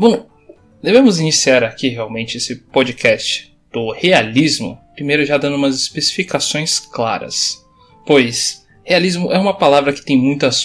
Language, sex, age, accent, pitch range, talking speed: Portuguese, male, 20-39, Brazilian, 135-180 Hz, 130 wpm